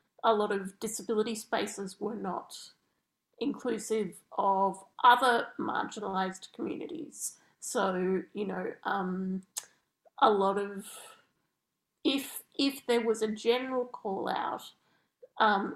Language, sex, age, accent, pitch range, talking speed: English, female, 30-49, Australian, 195-245 Hz, 105 wpm